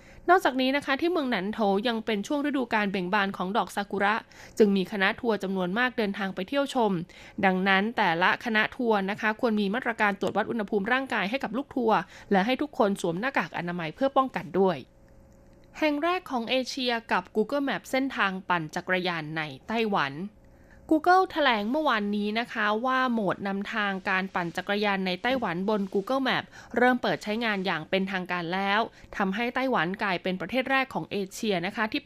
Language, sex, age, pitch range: Thai, female, 20-39, 190-250 Hz